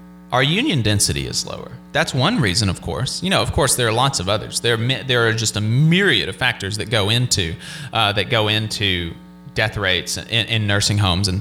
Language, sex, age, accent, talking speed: English, male, 30-49, American, 215 wpm